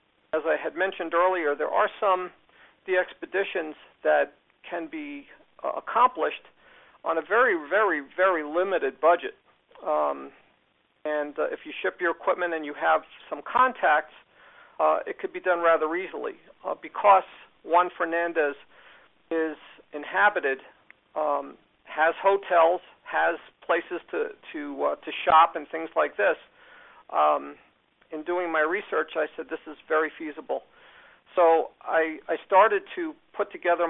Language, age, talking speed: English, 50-69, 145 wpm